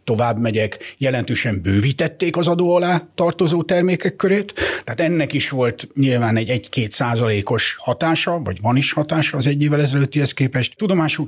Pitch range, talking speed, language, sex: 110-150 Hz, 140 wpm, Hungarian, male